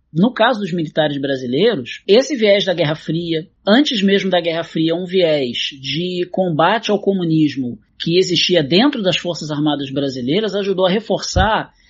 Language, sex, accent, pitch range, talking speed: Portuguese, male, Brazilian, 155-210 Hz, 155 wpm